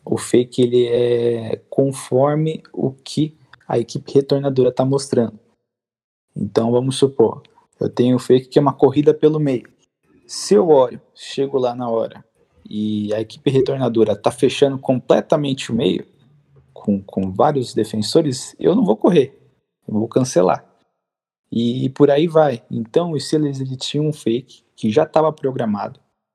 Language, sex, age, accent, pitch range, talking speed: Portuguese, male, 20-39, Brazilian, 115-140 Hz, 155 wpm